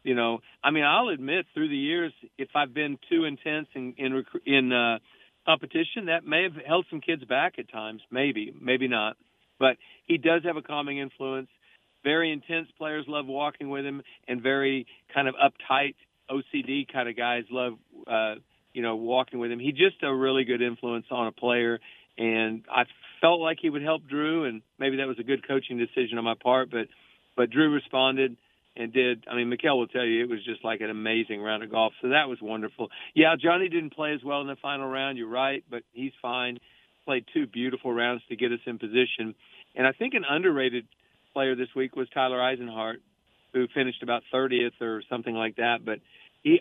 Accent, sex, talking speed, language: American, male, 205 wpm, English